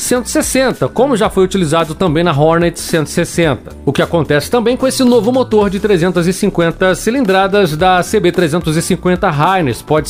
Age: 40-59